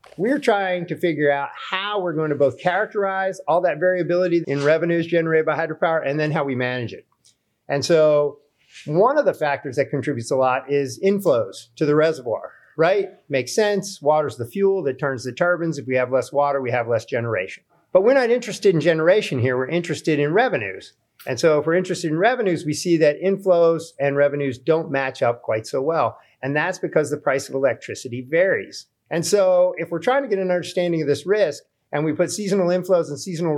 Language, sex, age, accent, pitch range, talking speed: English, male, 50-69, American, 135-180 Hz, 205 wpm